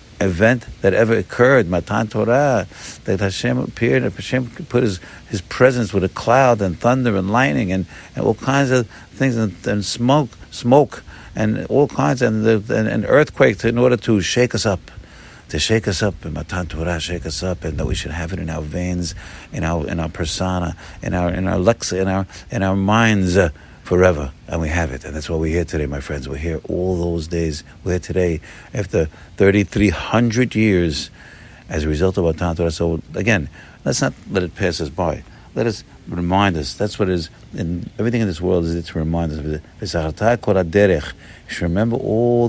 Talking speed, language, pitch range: 200 wpm, English, 80-105 Hz